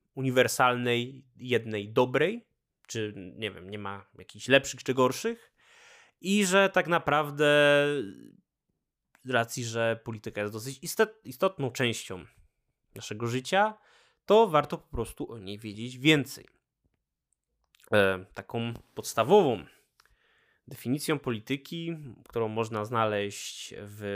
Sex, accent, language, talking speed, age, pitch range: male, native, Polish, 105 wpm, 20-39, 110-150 Hz